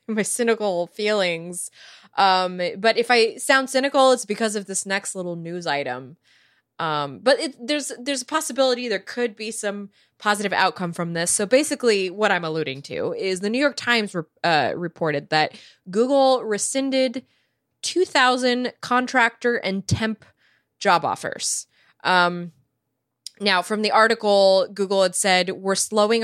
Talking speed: 150 wpm